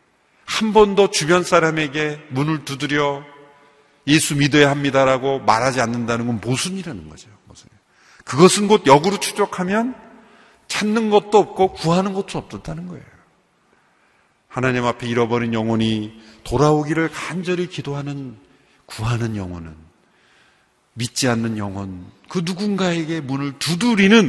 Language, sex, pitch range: Korean, male, 120-185 Hz